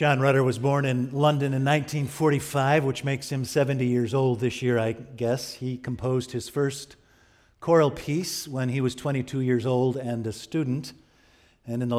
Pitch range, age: 120-145 Hz, 50-69